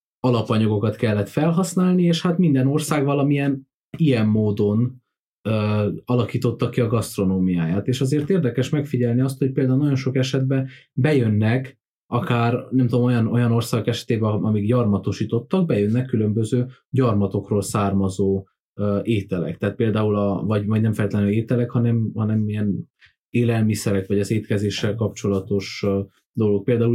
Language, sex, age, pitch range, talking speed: Hungarian, male, 20-39, 105-130 Hz, 135 wpm